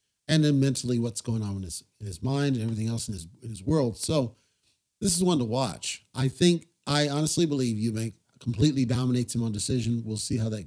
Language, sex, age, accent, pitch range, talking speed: English, male, 40-59, American, 120-145 Hz, 225 wpm